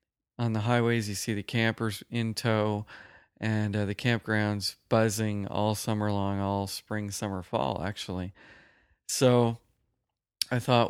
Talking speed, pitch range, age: 140 wpm, 105-120 Hz, 40-59